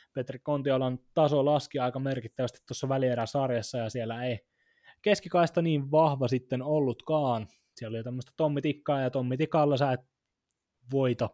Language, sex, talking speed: Finnish, male, 155 wpm